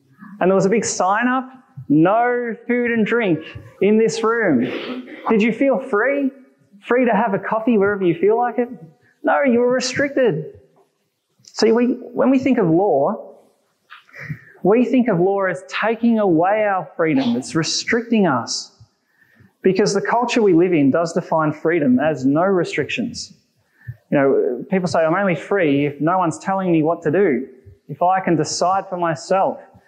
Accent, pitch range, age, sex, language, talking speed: Australian, 160-230 Hz, 20-39, male, English, 170 wpm